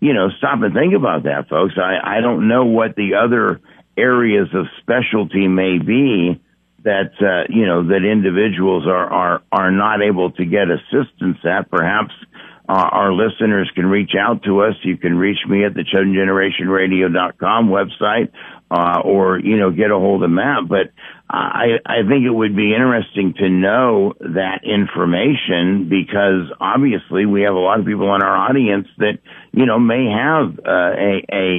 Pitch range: 95-105 Hz